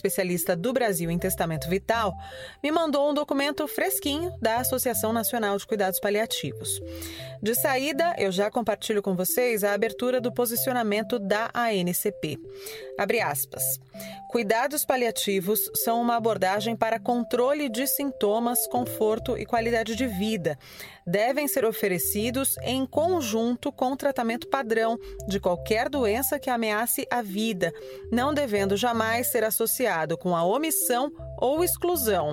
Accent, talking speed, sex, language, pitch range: Brazilian, 130 wpm, female, Portuguese, 190-245 Hz